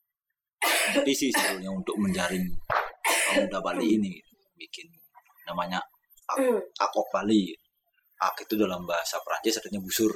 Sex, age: male, 20-39